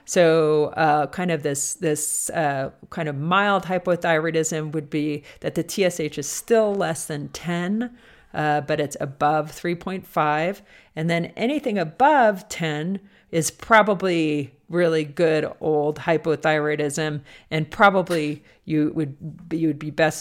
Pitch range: 150-190 Hz